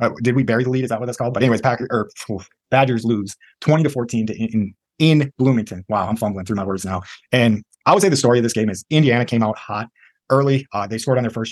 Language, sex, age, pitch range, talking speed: English, male, 30-49, 110-130 Hz, 270 wpm